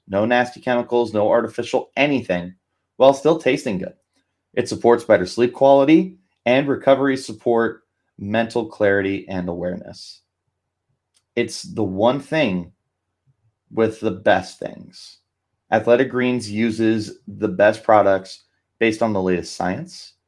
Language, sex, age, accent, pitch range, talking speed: English, male, 30-49, American, 100-120 Hz, 120 wpm